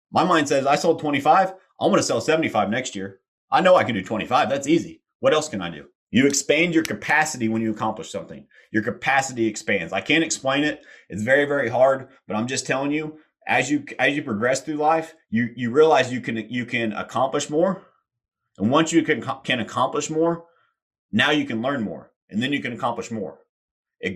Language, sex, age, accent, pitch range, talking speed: English, male, 30-49, American, 110-145 Hz, 210 wpm